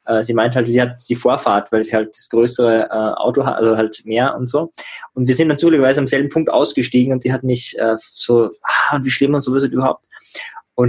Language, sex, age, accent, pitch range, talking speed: German, male, 20-39, German, 120-150 Hz, 230 wpm